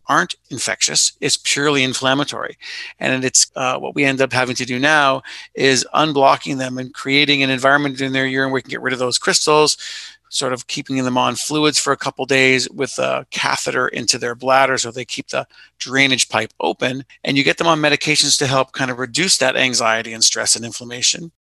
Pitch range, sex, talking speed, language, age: 125-140 Hz, male, 205 wpm, English, 40-59